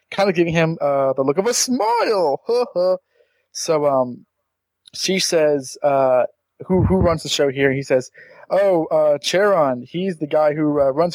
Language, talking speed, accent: English, 185 wpm, American